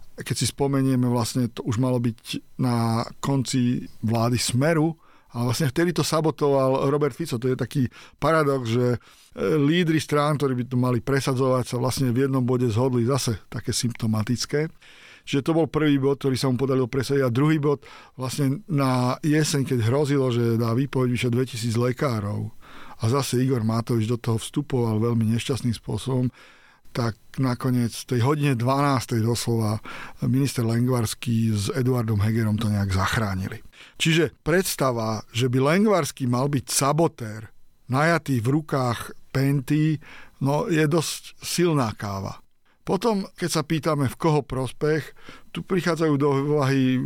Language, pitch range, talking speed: Slovak, 120-145 Hz, 145 wpm